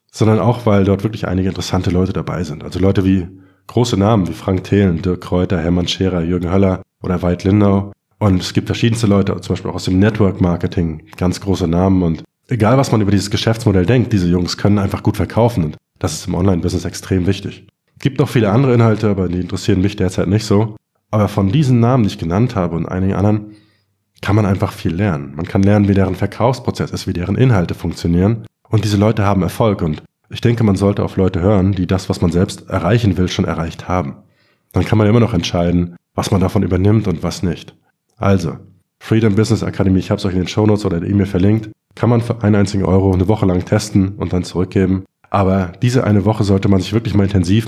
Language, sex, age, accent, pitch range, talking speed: German, male, 20-39, German, 90-105 Hz, 225 wpm